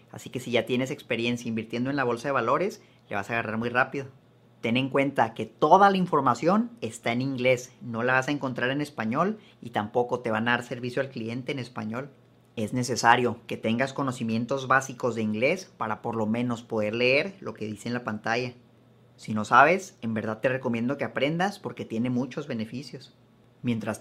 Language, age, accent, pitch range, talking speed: Spanish, 30-49, Mexican, 115-140 Hz, 200 wpm